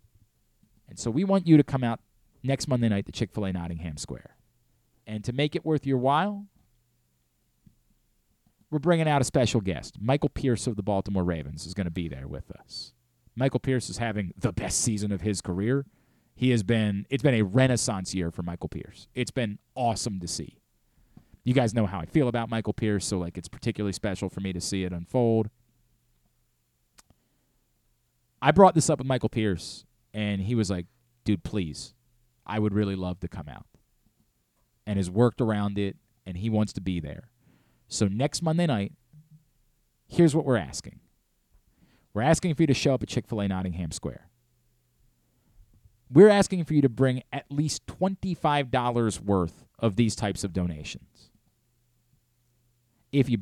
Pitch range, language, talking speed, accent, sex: 95-130 Hz, English, 170 wpm, American, male